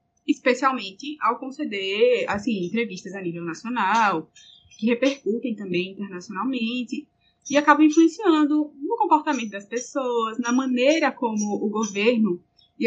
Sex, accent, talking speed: female, Brazilian, 115 wpm